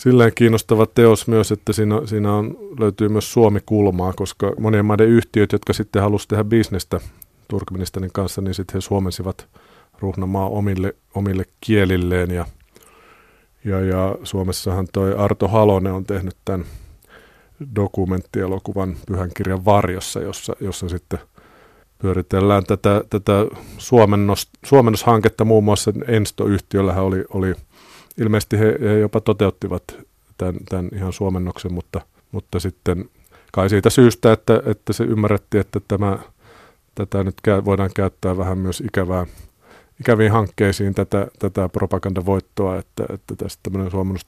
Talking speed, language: 125 wpm, Finnish